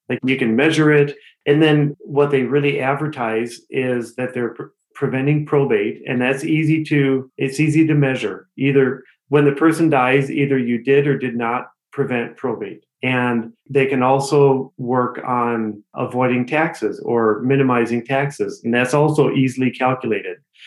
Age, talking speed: 40-59, 150 wpm